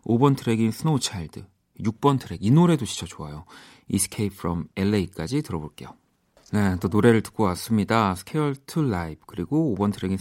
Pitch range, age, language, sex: 90-120 Hz, 40-59, Korean, male